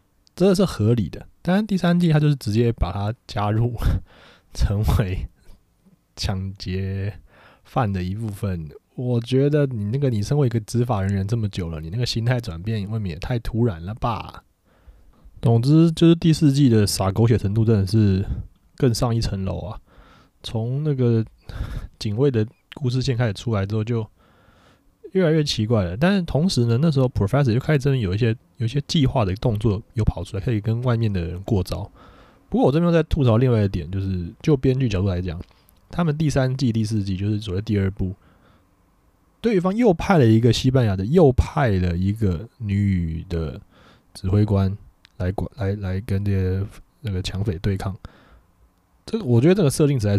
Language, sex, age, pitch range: Chinese, male, 20-39, 95-130 Hz